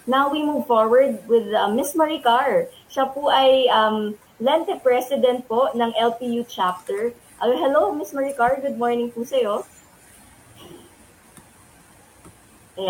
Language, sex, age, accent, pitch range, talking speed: Filipino, female, 20-39, native, 215-270 Hz, 135 wpm